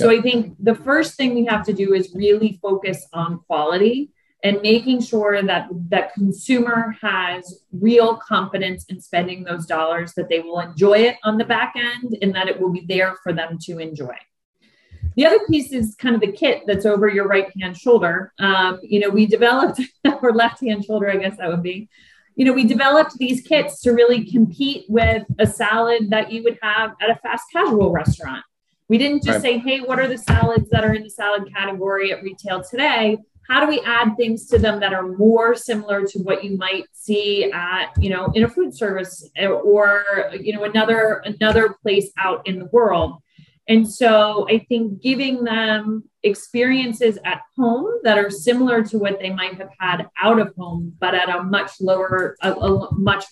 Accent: American